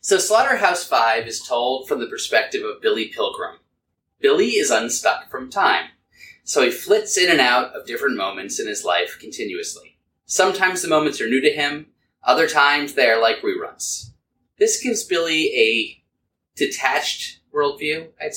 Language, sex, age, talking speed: English, male, 30-49, 155 wpm